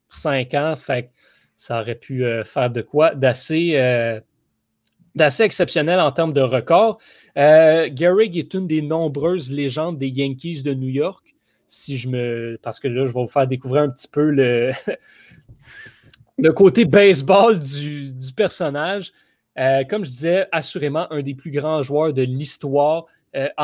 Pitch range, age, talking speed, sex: 135-165 Hz, 30-49, 160 wpm, male